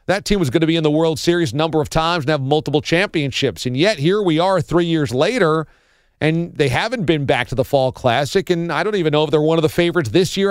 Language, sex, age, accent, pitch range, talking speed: English, male, 40-59, American, 140-195 Hz, 275 wpm